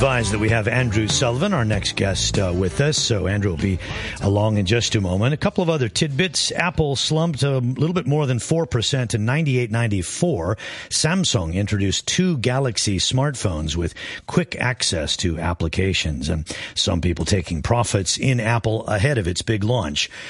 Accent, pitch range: American, 95-135 Hz